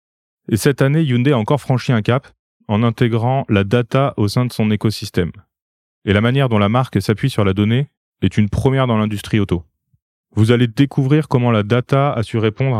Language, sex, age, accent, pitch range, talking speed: French, male, 30-49, French, 100-125 Hz, 200 wpm